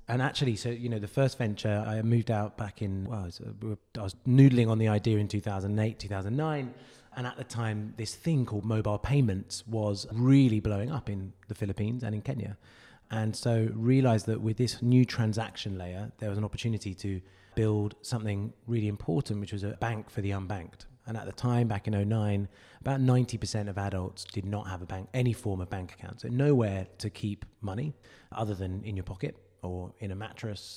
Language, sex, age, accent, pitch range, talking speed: English, male, 30-49, British, 100-115 Hz, 205 wpm